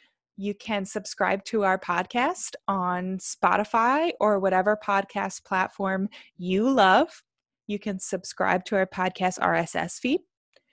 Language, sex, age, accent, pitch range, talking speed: English, female, 20-39, American, 195-240 Hz, 125 wpm